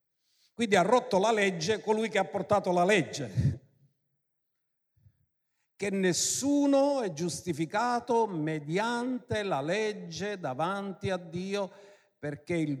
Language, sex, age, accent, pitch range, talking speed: Italian, male, 50-69, native, 155-225 Hz, 110 wpm